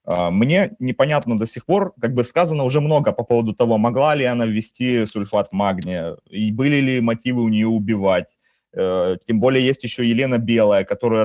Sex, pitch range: male, 110-130 Hz